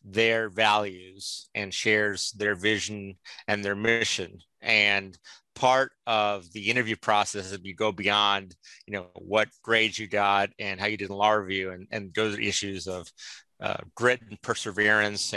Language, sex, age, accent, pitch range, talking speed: English, male, 30-49, American, 100-110 Hz, 160 wpm